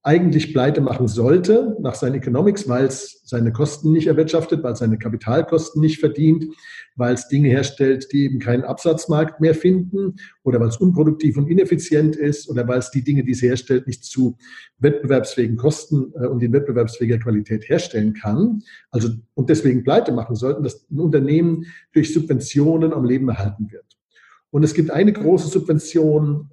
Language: German